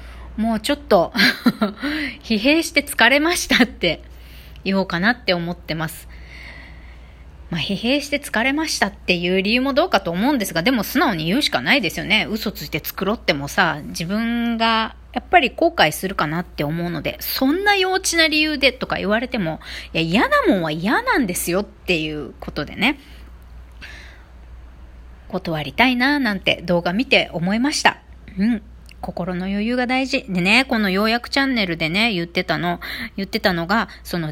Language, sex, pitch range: Japanese, female, 160-240 Hz